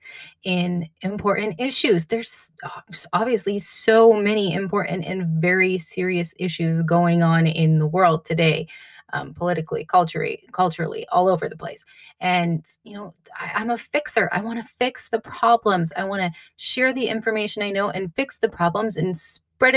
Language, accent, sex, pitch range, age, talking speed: English, American, female, 175-215 Hz, 20-39, 160 wpm